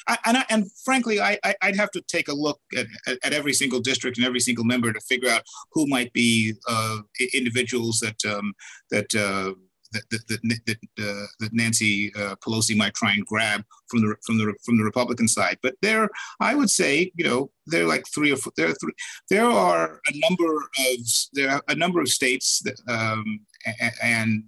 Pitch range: 115-140 Hz